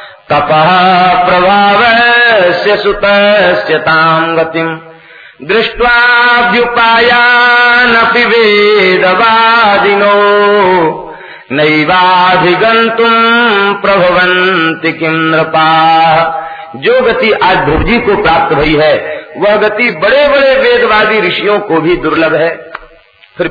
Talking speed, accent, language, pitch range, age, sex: 75 wpm, native, Hindi, 155-205 Hz, 50-69, male